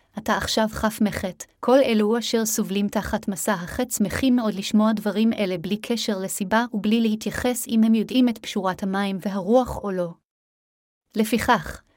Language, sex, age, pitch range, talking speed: Hebrew, female, 30-49, 205-230 Hz, 155 wpm